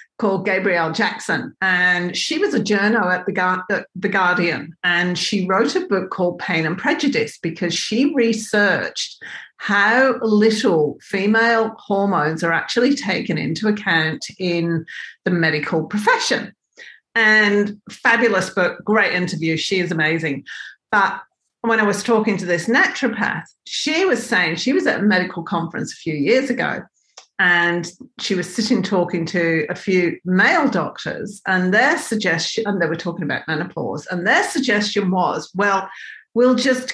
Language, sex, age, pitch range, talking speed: English, female, 40-59, 180-235 Hz, 150 wpm